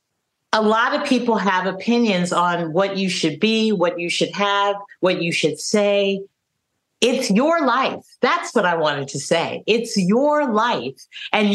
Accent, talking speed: American, 165 wpm